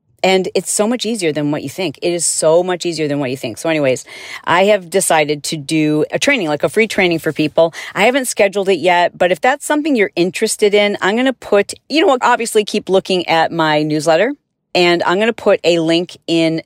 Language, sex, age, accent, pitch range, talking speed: English, female, 40-59, American, 155-205 Hz, 240 wpm